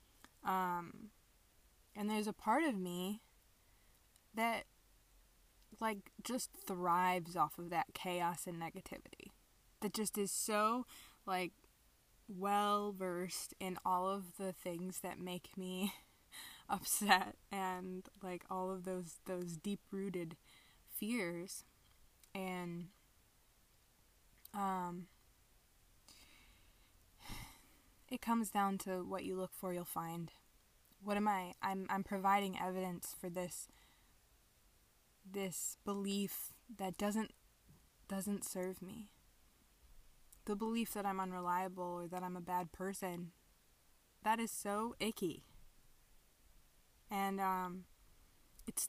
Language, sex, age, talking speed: English, female, 20-39, 105 wpm